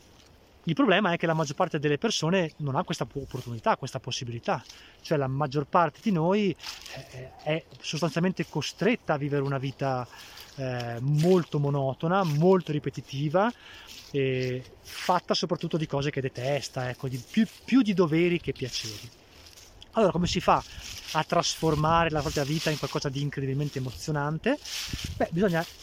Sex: male